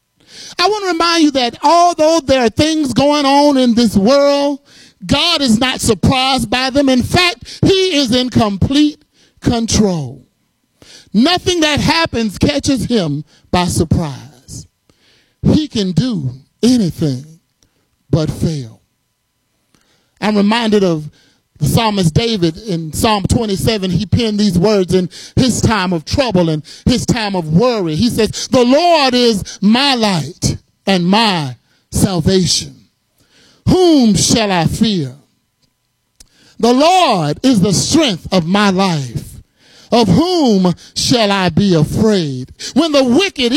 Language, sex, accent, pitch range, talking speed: English, male, American, 180-285 Hz, 130 wpm